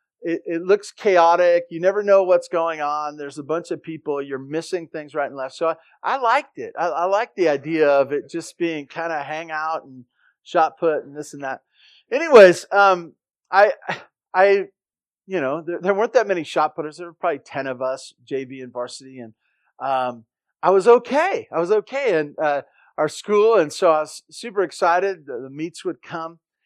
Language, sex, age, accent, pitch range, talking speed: English, male, 40-59, American, 155-205 Hz, 205 wpm